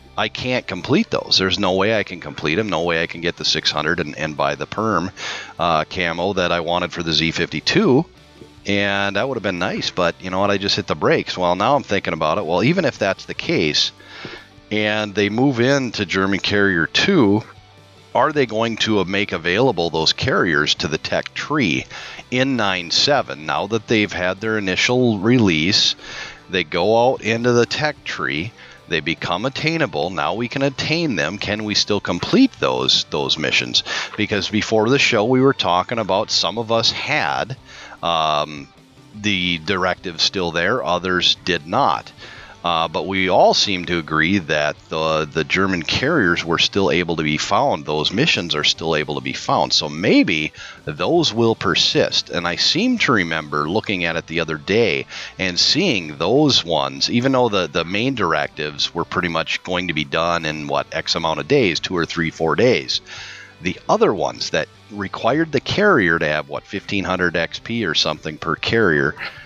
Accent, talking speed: American, 185 wpm